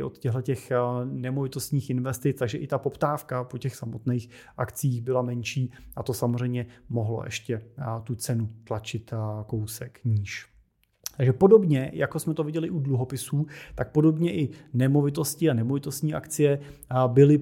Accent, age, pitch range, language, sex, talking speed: native, 30-49, 120-140 Hz, Czech, male, 140 wpm